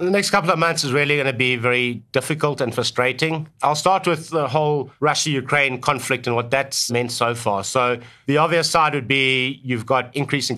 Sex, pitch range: male, 120-150 Hz